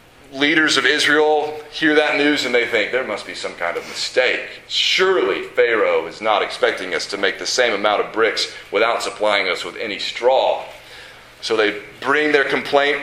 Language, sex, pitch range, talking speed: English, male, 135-225 Hz, 185 wpm